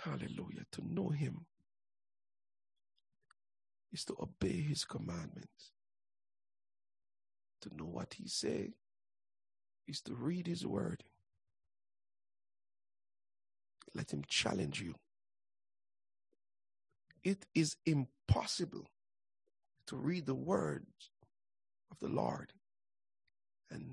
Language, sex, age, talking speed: English, male, 60-79, 85 wpm